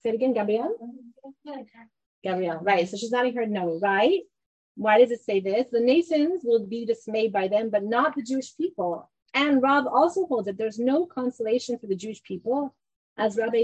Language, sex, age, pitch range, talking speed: English, female, 30-49, 200-255 Hz, 200 wpm